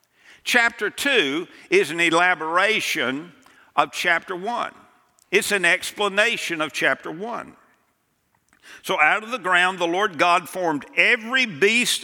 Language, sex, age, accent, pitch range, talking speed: English, male, 60-79, American, 165-240 Hz, 125 wpm